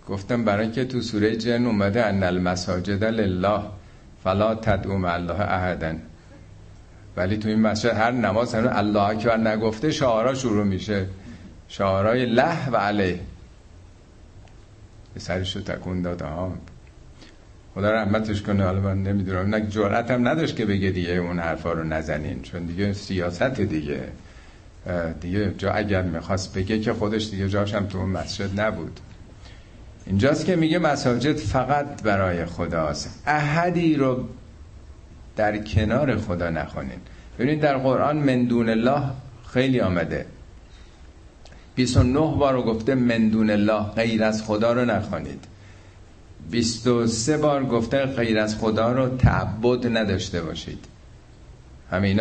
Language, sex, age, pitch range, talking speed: Persian, male, 50-69, 90-115 Hz, 130 wpm